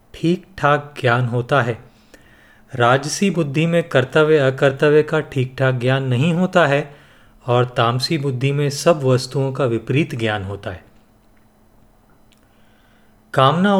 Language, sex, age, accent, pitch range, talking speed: Hindi, male, 40-59, native, 120-165 Hz, 125 wpm